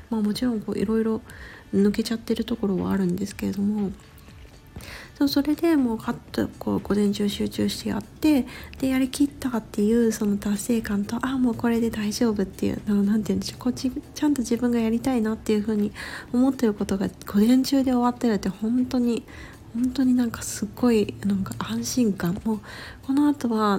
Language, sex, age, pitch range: Japanese, female, 40-59, 200-245 Hz